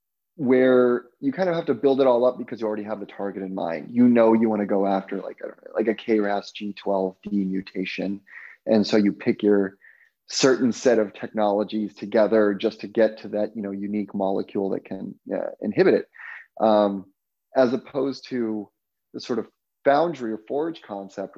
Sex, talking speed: male, 190 wpm